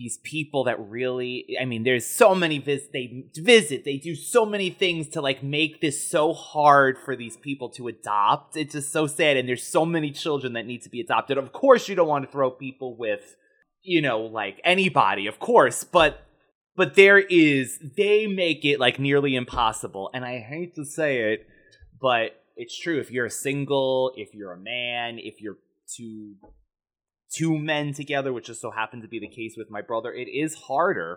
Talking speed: 210 wpm